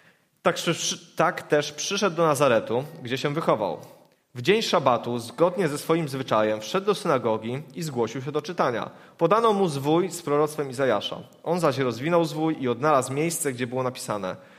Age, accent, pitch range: 30-49, native, 140-180 Hz